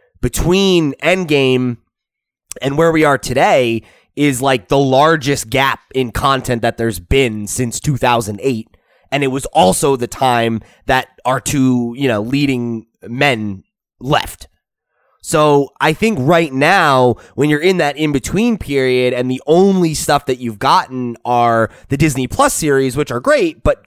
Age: 20-39